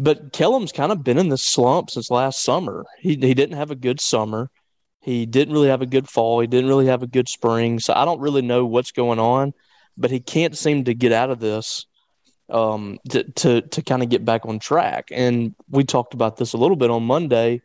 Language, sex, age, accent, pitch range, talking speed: English, male, 30-49, American, 115-135 Hz, 235 wpm